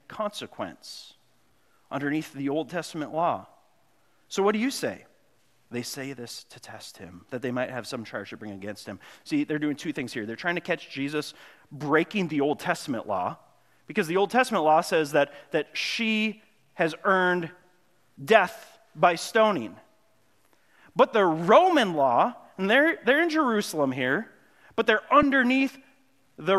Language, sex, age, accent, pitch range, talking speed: English, male, 30-49, American, 140-180 Hz, 160 wpm